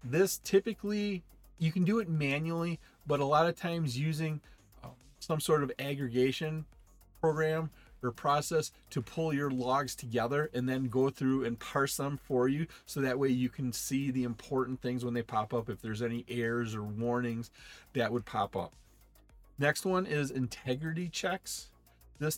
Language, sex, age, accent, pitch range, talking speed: English, male, 40-59, American, 120-160 Hz, 170 wpm